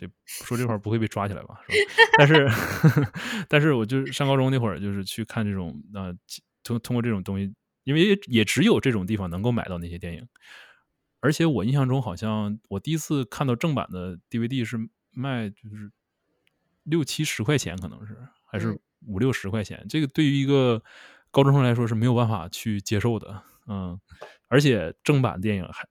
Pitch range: 110-155 Hz